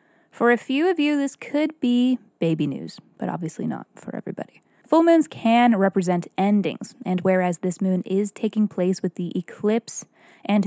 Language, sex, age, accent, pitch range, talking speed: English, female, 20-39, American, 185-230 Hz, 175 wpm